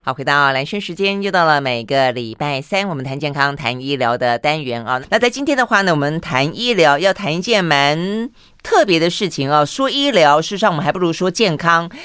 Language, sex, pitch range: Chinese, female, 150-210 Hz